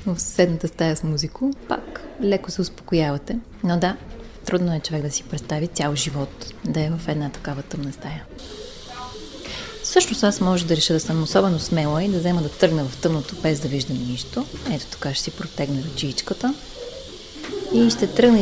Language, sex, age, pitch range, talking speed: Bulgarian, female, 30-49, 145-195 Hz, 180 wpm